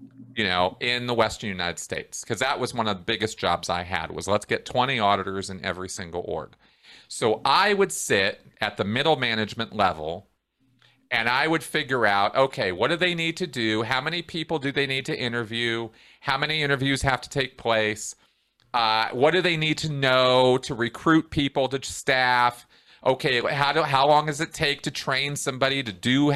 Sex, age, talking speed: male, 40-59, 200 wpm